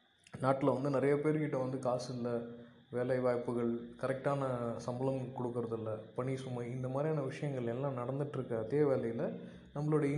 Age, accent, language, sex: 20-39, native, Tamil, male